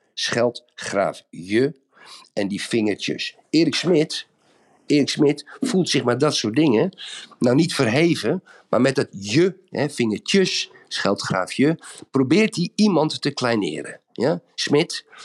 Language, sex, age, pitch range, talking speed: Dutch, male, 50-69, 120-170 Hz, 130 wpm